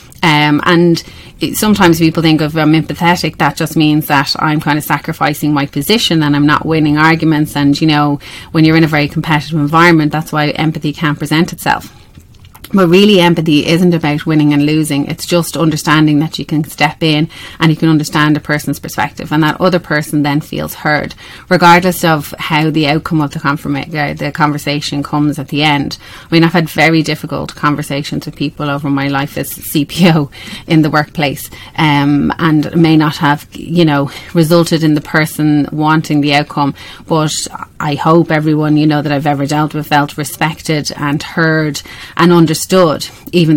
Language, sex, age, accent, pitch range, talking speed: English, female, 30-49, Irish, 145-160 Hz, 180 wpm